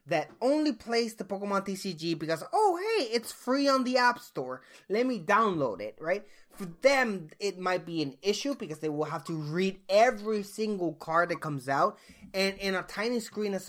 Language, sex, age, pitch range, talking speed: English, male, 20-39, 165-240 Hz, 195 wpm